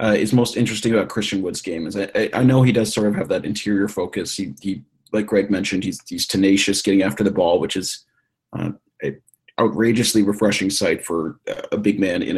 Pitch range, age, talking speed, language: 100-120 Hz, 30-49, 220 wpm, English